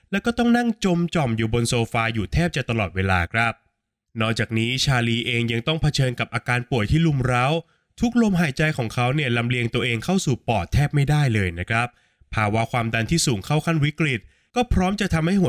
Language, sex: Thai, male